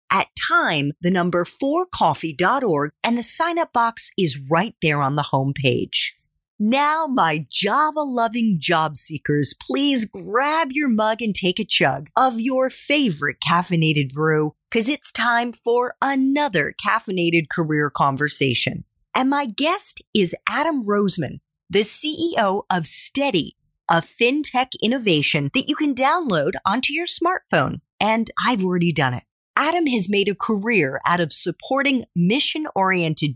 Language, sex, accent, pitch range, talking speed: English, female, American, 165-275 Hz, 135 wpm